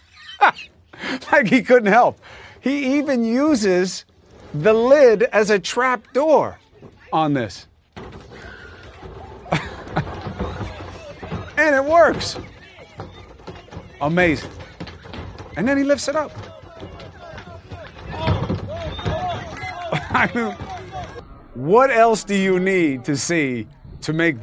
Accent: American